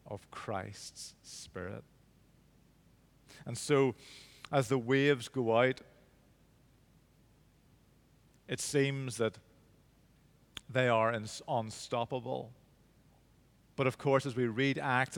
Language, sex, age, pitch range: English, male, 40-59, 110-130 Hz